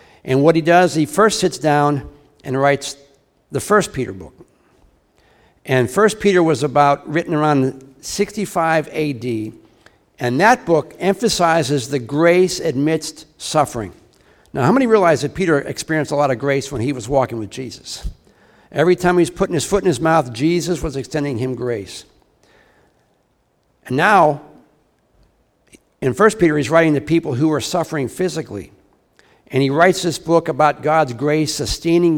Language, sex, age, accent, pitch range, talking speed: English, male, 60-79, American, 135-170 Hz, 155 wpm